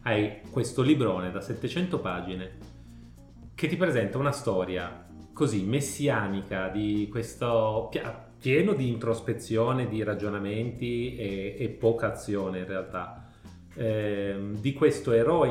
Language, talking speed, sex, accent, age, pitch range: Italian, 115 wpm, male, native, 30-49, 95-115 Hz